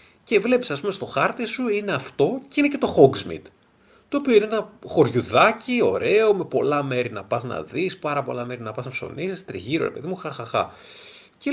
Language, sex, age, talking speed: Greek, male, 30-49, 220 wpm